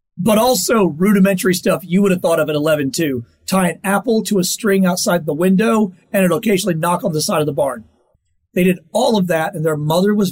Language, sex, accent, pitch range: English, male, American, 160-210 Hz